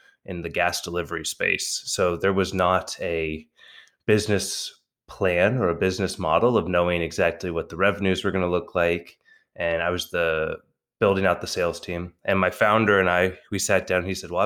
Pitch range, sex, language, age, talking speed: 90-110 Hz, male, English, 20-39, 195 wpm